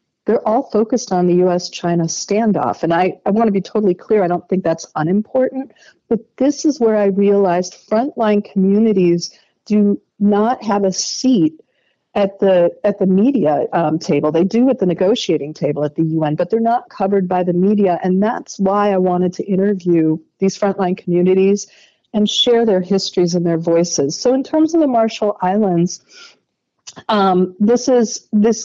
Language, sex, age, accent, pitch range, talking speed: English, female, 50-69, American, 175-215 Hz, 175 wpm